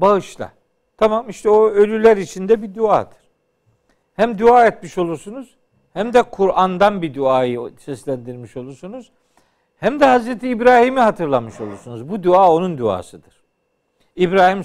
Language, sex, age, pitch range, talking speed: Turkish, male, 60-79, 165-225 Hz, 125 wpm